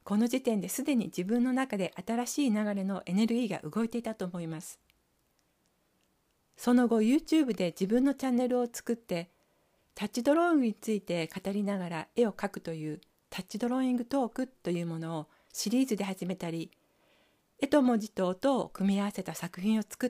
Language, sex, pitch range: Japanese, female, 185-255 Hz